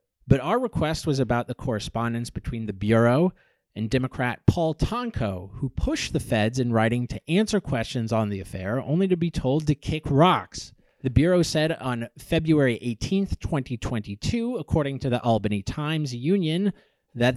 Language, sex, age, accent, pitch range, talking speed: English, male, 30-49, American, 115-160 Hz, 160 wpm